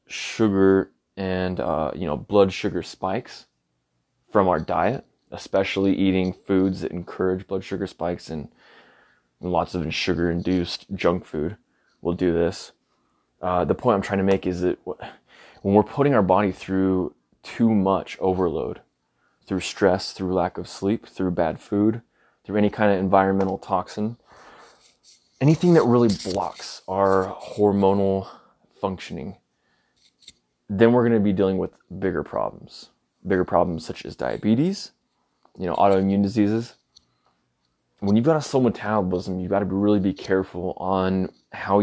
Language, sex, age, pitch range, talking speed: English, male, 20-39, 90-105 Hz, 145 wpm